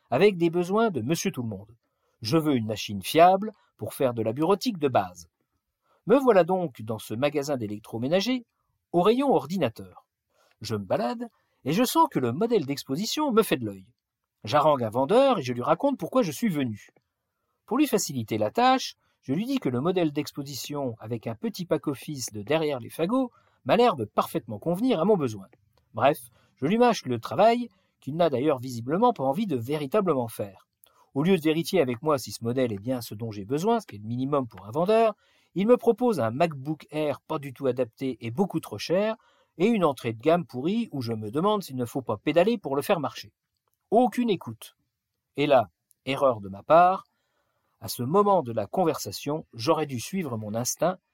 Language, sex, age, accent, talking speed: French, male, 50-69, French, 205 wpm